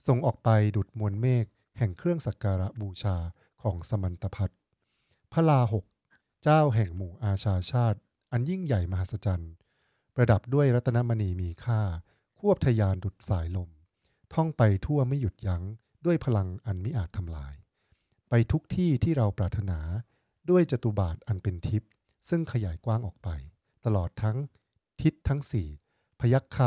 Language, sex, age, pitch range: English, male, 60-79, 100-125 Hz